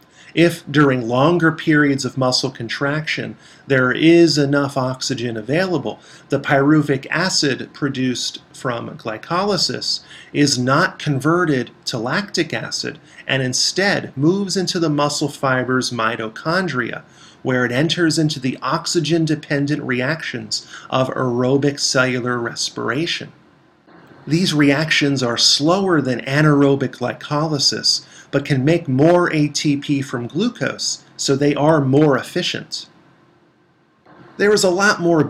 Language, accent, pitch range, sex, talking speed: English, American, 130-160 Hz, male, 115 wpm